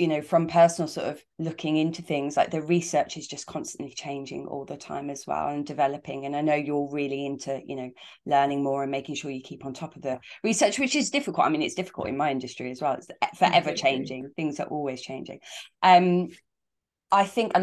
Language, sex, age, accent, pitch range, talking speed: English, female, 20-39, British, 145-170 Hz, 225 wpm